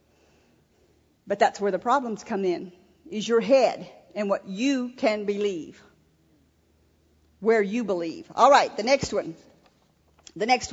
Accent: American